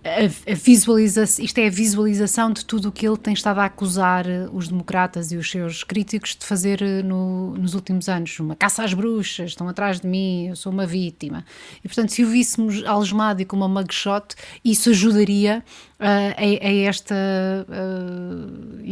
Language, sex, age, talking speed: Portuguese, female, 20-39, 170 wpm